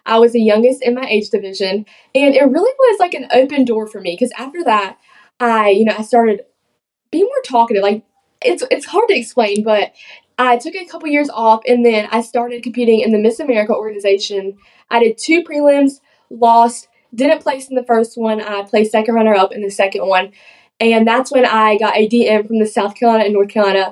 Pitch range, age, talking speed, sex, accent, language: 215-260 Hz, 10-29, 215 wpm, female, American, English